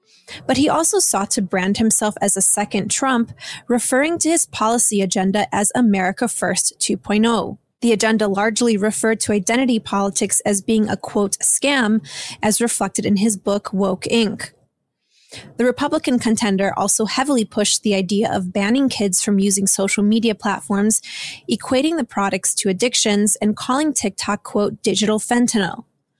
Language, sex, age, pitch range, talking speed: English, female, 20-39, 200-235 Hz, 150 wpm